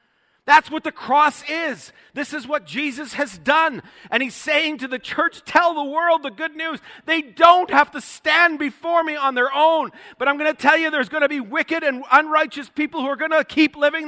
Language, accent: English, American